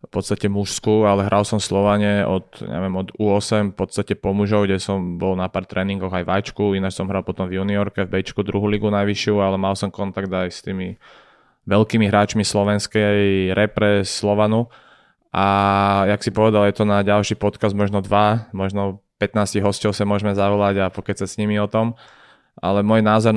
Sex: male